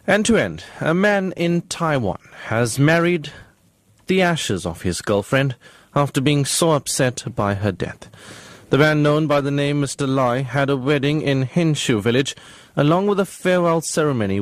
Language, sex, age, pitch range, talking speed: English, male, 30-49, 115-155 Hz, 165 wpm